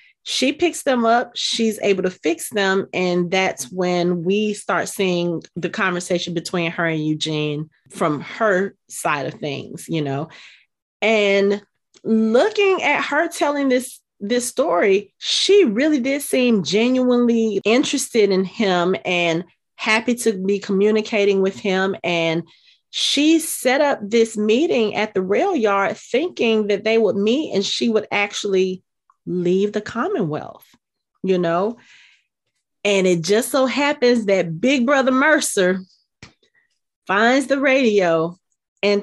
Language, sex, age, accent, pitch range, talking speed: English, female, 30-49, American, 180-240 Hz, 135 wpm